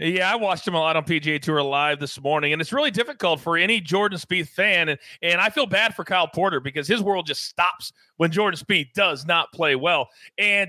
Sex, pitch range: male, 155-210 Hz